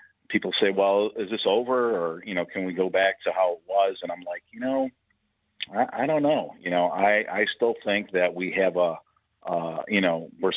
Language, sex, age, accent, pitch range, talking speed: English, male, 40-59, American, 90-110 Hz, 225 wpm